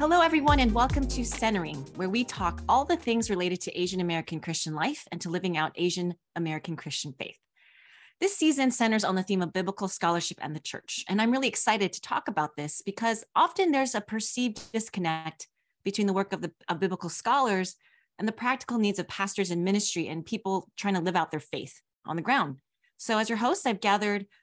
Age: 30-49